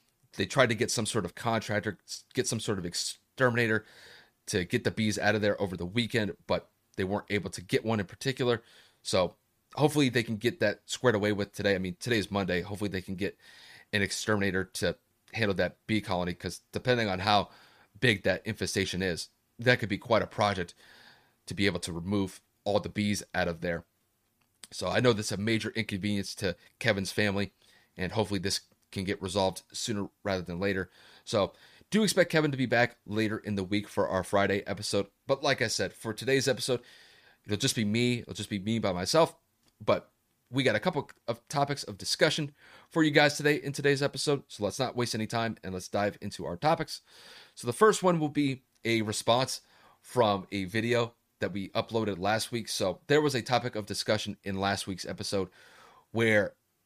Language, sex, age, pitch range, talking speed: English, male, 30-49, 100-120 Hz, 200 wpm